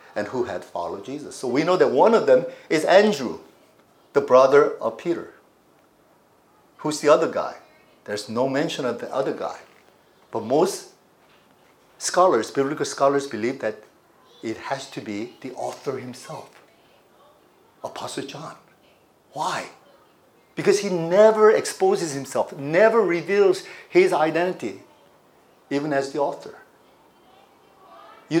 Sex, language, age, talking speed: male, English, 50-69, 125 wpm